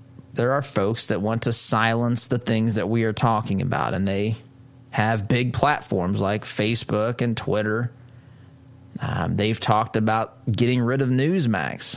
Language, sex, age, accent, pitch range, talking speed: English, male, 20-39, American, 110-130 Hz, 155 wpm